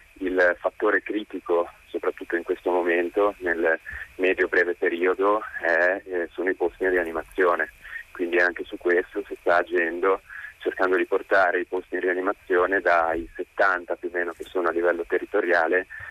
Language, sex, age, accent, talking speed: Italian, male, 20-39, native, 155 wpm